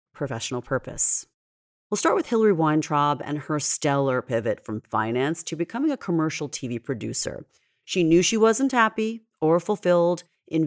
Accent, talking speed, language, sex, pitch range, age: American, 150 wpm, English, female, 130-205 Hz, 40-59